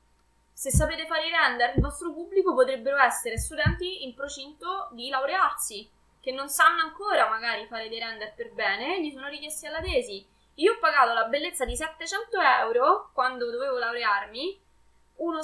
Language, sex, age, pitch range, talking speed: Italian, female, 20-39, 230-315 Hz, 165 wpm